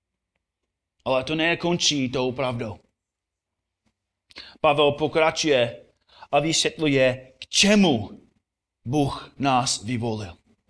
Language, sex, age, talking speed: Czech, male, 30-49, 80 wpm